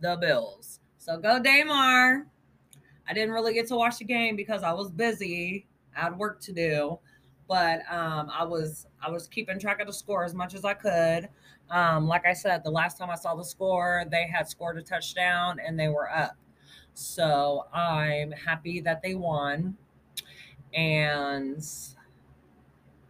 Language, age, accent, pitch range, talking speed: English, 20-39, American, 140-180 Hz, 170 wpm